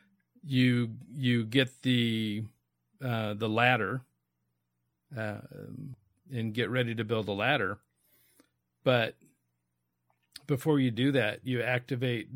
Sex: male